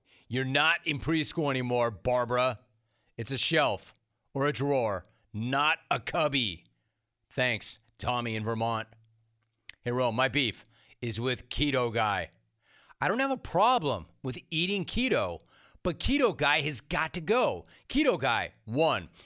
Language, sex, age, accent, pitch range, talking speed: English, male, 40-59, American, 115-155 Hz, 140 wpm